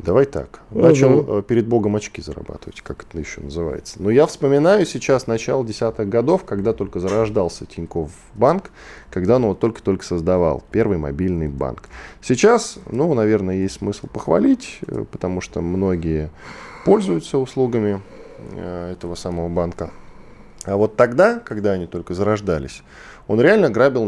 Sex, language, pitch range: male, Russian, 90-125 Hz